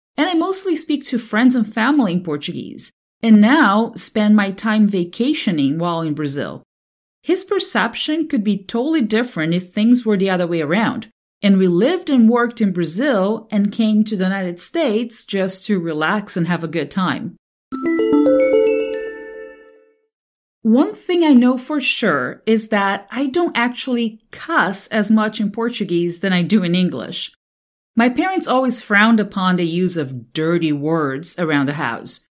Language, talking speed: English, 160 wpm